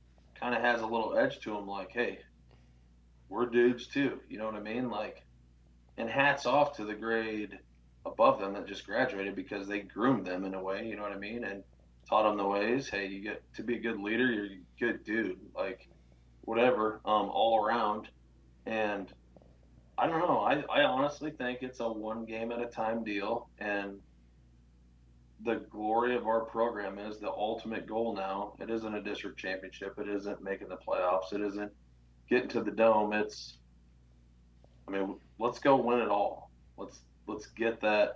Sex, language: male, English